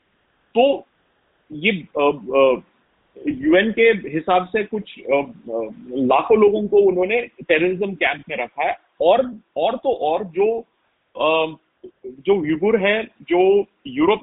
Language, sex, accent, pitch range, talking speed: Hindi, male, native, 170-240 Hz, 105 wpm